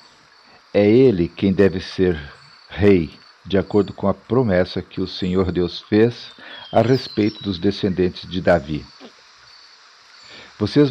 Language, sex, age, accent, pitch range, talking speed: Portuguese, male, 50-69, Brazilian, 95-110 Hz, 125 wpm